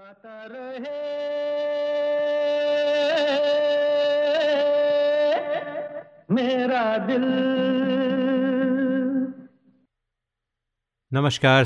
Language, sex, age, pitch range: Hindi, male, 30-49, 100-135 Hz